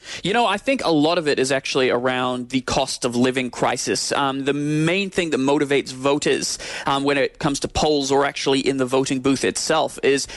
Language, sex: English, male